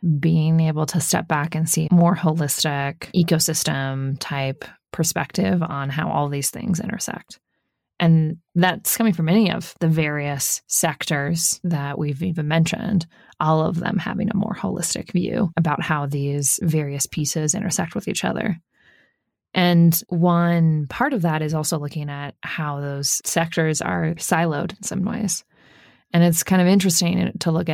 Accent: American